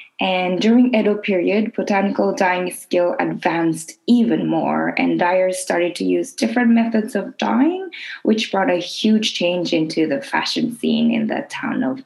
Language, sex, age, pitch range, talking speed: English, female, 20-39, 170-240 Hz, 160 wpm